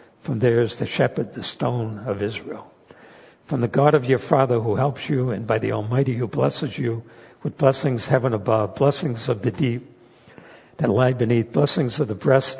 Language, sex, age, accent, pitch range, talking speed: English, male, 60-79, American, 115-140 Hz, 190 wpm